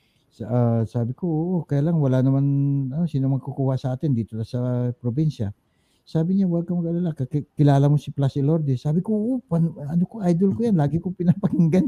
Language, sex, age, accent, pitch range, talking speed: Filipino, male, 60-79, native, 110-155 Hz, 195 wpm